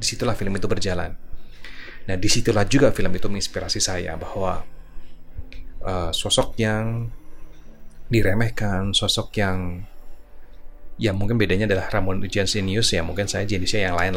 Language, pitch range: Indonesian, 90-110 Hz